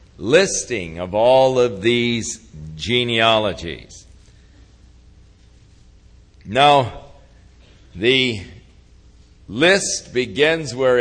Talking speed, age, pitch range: 60 wpm, 60-79, 105-140 Hz